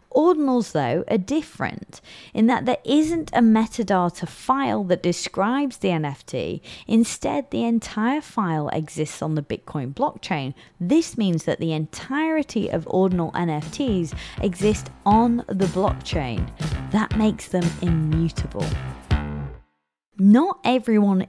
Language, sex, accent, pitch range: English, female, British, 160-235 Hz